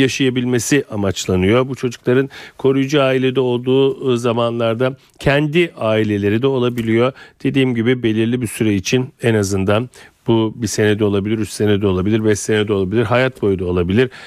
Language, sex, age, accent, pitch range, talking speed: Turkish, male, 40-59, native, 115-135 Hz, 145 wpm